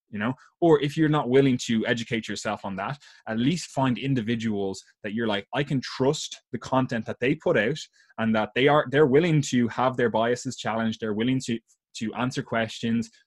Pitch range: 110-130 Hz